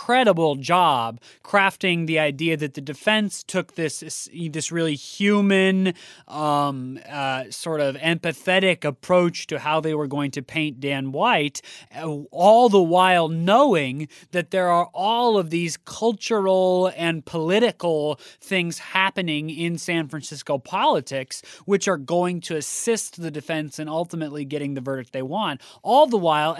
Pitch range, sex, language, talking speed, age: 145-180 Hz, male, English, 145 wpm, 30-49